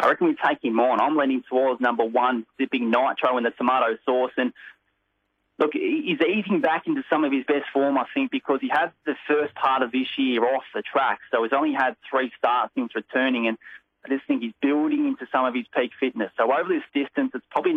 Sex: male